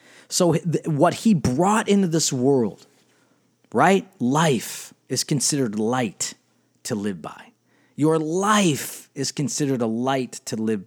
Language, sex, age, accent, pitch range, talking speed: English, male, 40-59, American, 120-160 Hz, 125 wpm